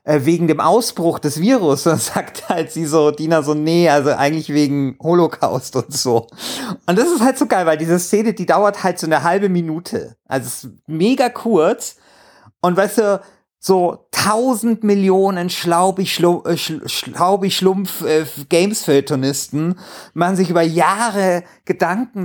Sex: male